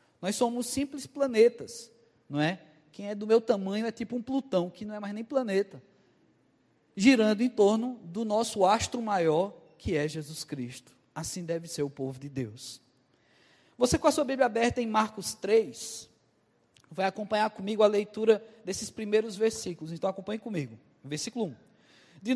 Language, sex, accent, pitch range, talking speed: Portuguese, male, Brazilian, 180-245 Hz, 165 wpm